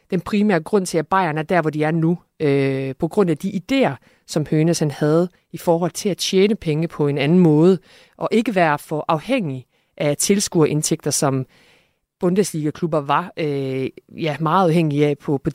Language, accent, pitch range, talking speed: Danish, native, 155-195 Hz, 170 wpm